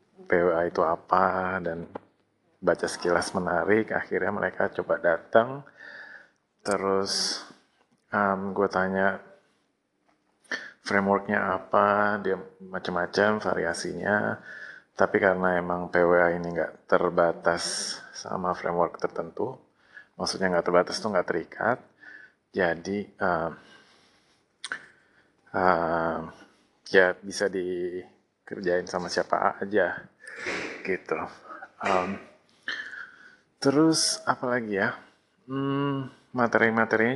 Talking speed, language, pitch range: 85 wpm, Indonesian, 90-100 Hz